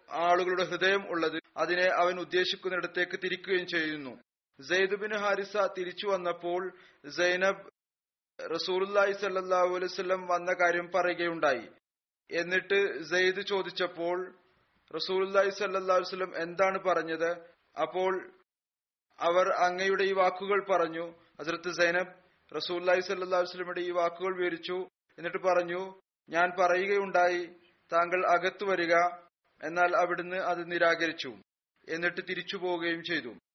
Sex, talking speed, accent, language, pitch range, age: male, 95 wpm, native, Malayalam, 175-190 Hz, 30-49